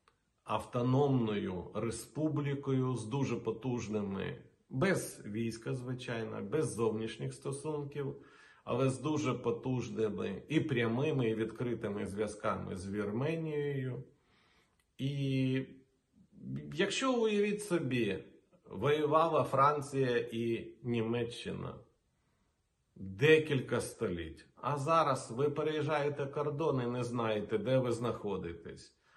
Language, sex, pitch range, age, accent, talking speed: Ukrainian, male, 110-145 Hz, 40-59, native, 90 wpm